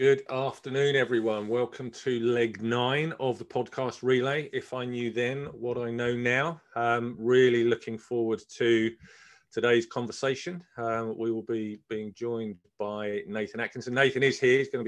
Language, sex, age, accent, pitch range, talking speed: English, male, 40-59, British, 110-125 Hz, 165 wpm